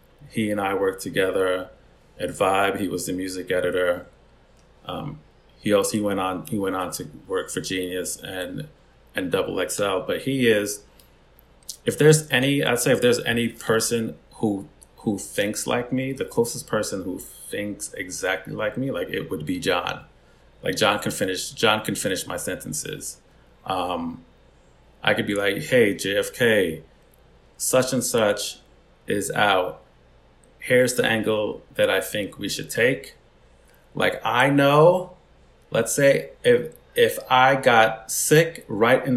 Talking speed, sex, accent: 155 wpm, male, American